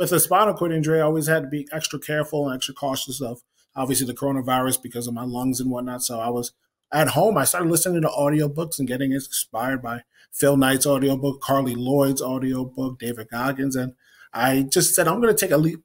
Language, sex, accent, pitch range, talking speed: English, male, American, 130-160 Hz, 215 wpm